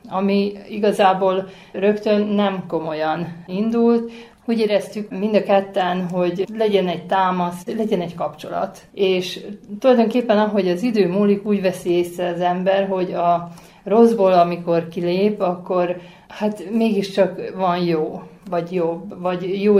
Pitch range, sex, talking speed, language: 175-205 Hz, female, 130 wpm, Hungarian